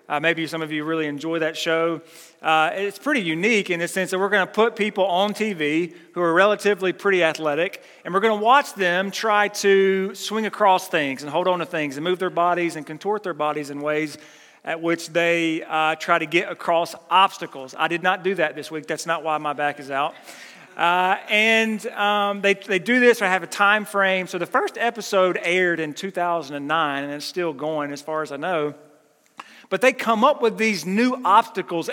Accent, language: American, English